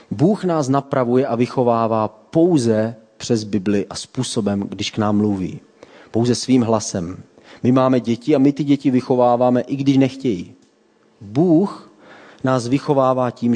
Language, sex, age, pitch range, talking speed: Czech, male, 30-49, 105-130 Hz, 140 wpm